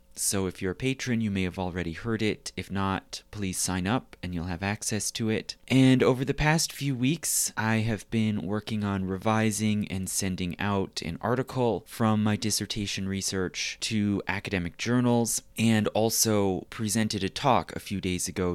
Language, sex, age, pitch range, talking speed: English, male, 30-49, 90-110 Hz, 180 wpm